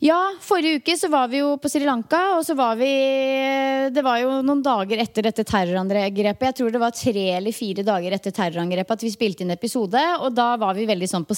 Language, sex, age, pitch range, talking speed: English, female, 30-49, 210-275 Hz, 225 wpm